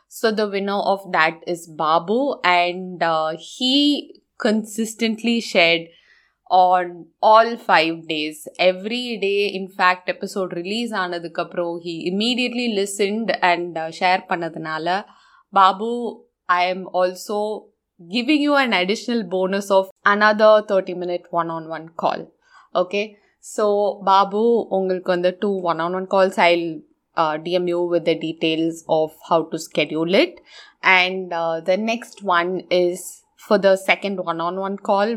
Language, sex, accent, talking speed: Tamil, female, native, 140 wpm